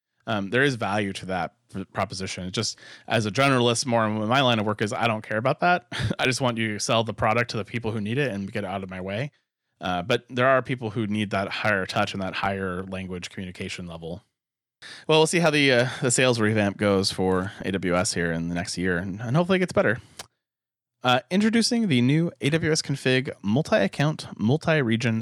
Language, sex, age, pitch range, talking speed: English, male, 30-49, 100-125 Hz, 215 wpm